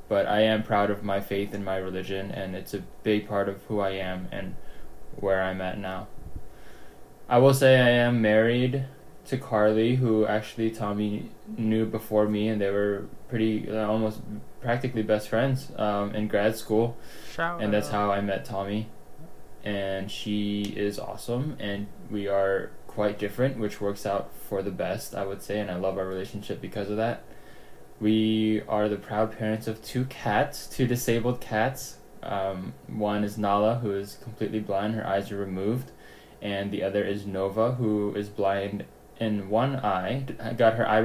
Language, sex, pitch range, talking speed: English, male, 100-115 Hz, 175 wpm